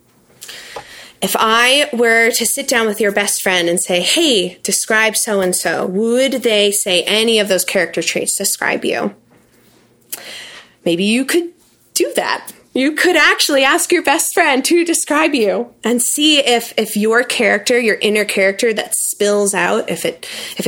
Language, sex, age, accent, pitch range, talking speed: English, female, 20-39, American, 185-245 Hz, 160 wpm